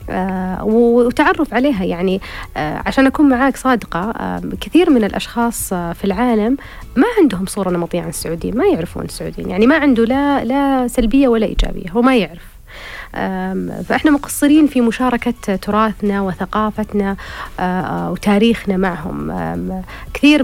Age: 30-49